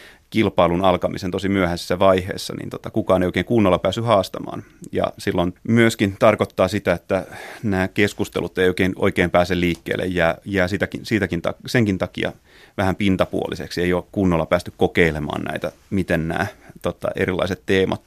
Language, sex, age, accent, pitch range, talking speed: Finnish, male, 30-49, native, 90-105 Hz, 150 wpm